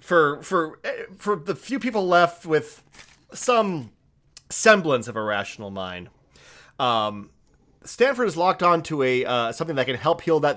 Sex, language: male, English